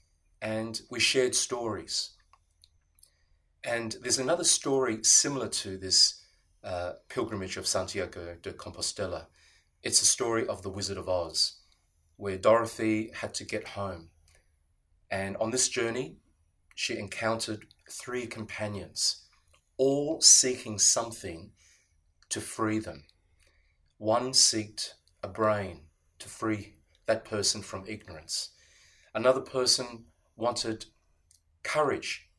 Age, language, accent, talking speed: 30-49, English, Australian, 110 wpm